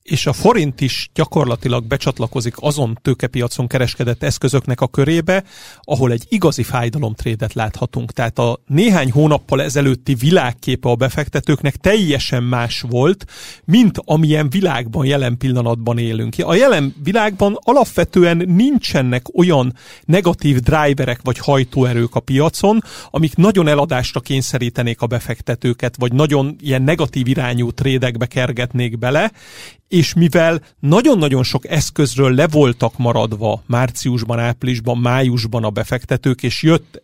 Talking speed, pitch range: 120 wpm, 125-150 Hz